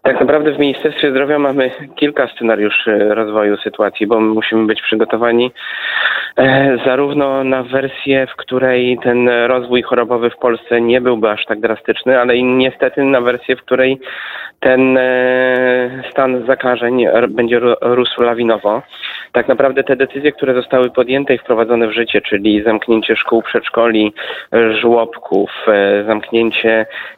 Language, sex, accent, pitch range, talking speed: Polish, male, native, 115-130 Hz, 130 wpm